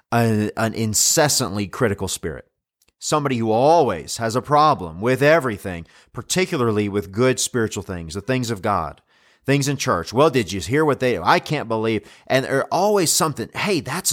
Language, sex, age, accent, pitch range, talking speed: English, male, 30-49, American, 110-150 Hz, 175 wpm